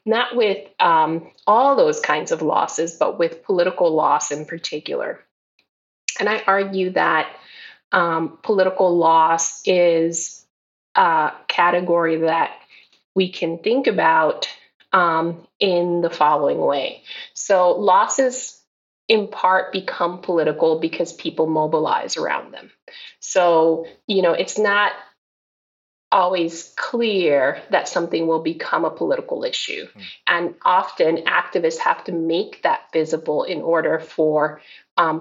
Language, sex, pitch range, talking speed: English, female, 160-190 Hz, 120 wpm